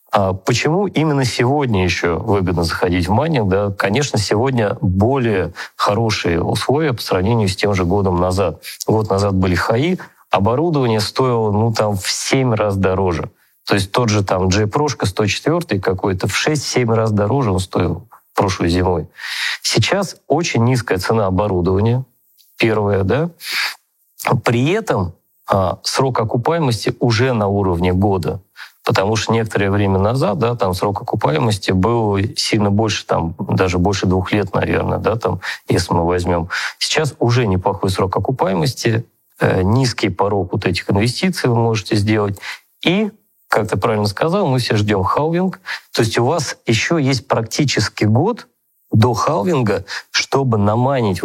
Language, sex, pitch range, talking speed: Russian, male, 95-125 Hz, 145 wpm